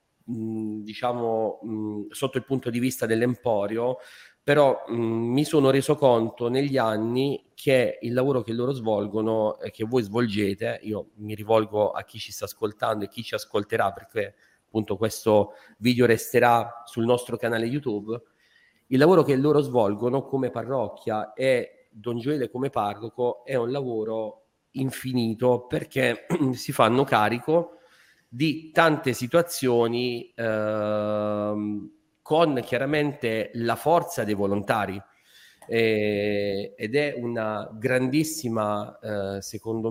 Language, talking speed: Italian, 125 wpm